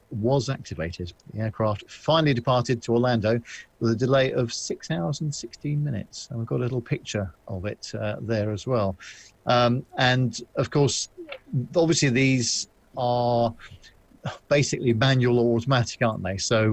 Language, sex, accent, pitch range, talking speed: English, male, British, 105-130 Hz, 155 wpm